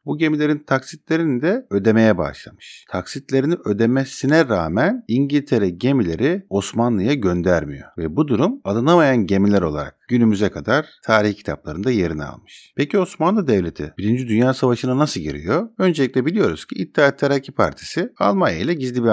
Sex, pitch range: male, 90-145 Hz